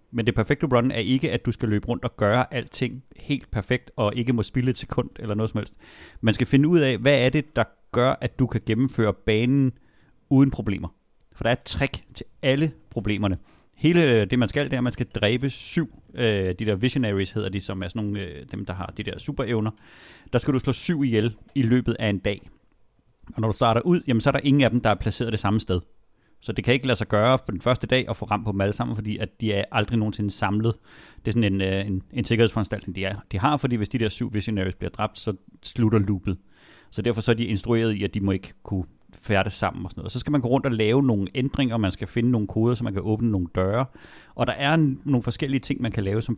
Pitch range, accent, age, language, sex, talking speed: 105-125 Hz, native, 30-49, Danish, male, 265 wpm